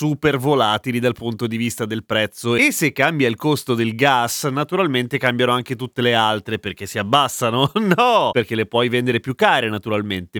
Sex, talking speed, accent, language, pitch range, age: male, 185 wpm, native, Italian, 120-170 Hz, 30-49